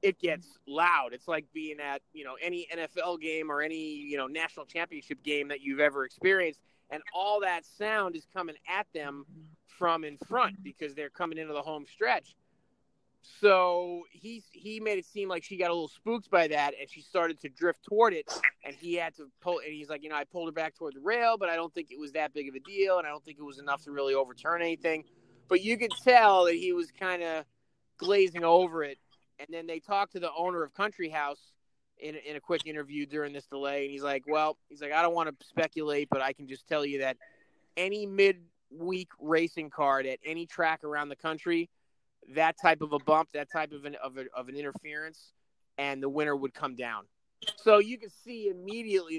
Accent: American